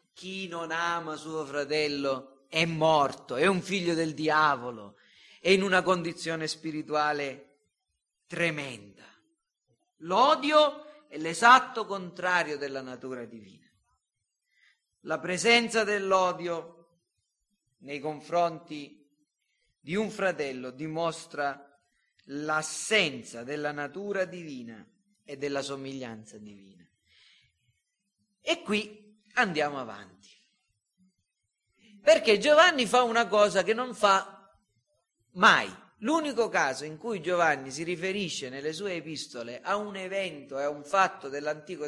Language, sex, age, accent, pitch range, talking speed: Italian, male, 40-59, native, 145-220 Hz, 105 wpm